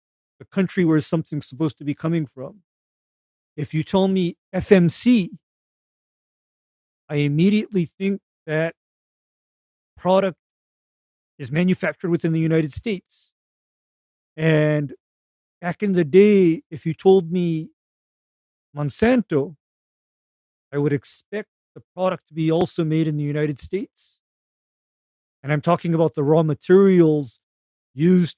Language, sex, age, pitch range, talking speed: English, male, 50-69, 145-180 Hz, 120 wpm